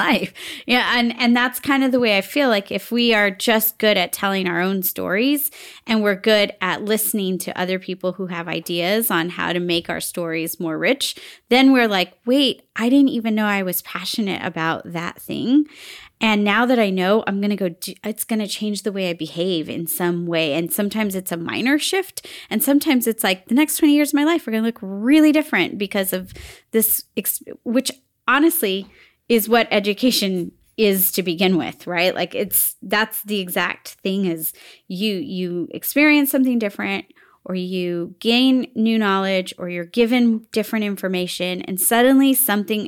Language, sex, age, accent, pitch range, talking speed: English, female, 30-49, American, 180-240 Hz, 195 wpm